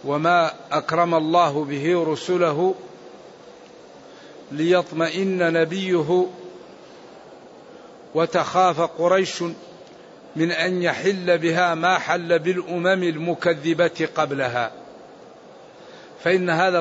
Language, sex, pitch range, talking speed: Arabic, male, 165-195 Hz, 70 wpm